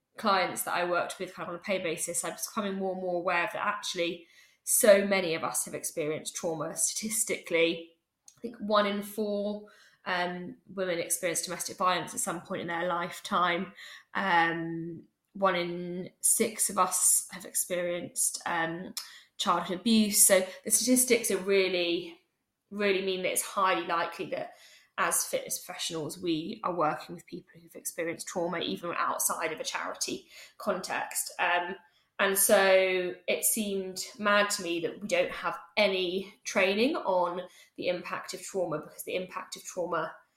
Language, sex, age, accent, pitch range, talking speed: English, female, 10-29, British, 170-200 Hz, 160 wpm